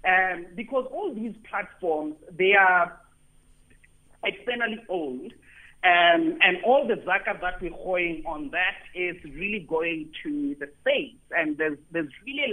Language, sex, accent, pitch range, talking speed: English, male, South African, 175-280 Hz, 140 wpm